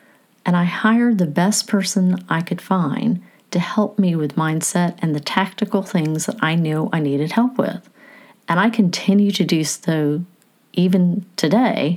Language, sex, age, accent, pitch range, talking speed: English, female, 40-59, American, 170-225 Hz, 165 wpm